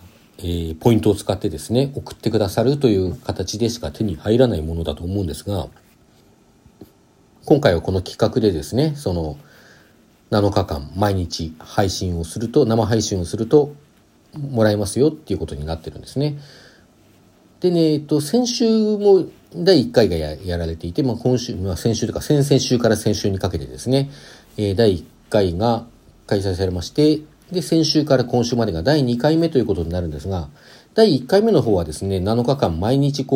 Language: Japanese